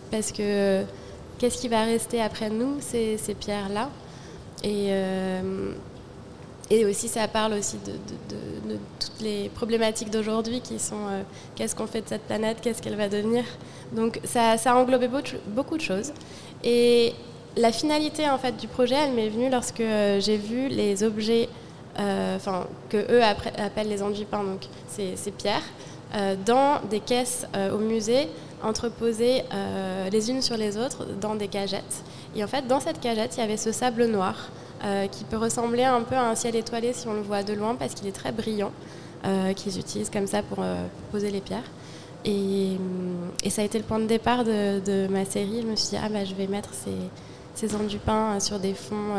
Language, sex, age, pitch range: French, female, 20-39, 195-230 Hz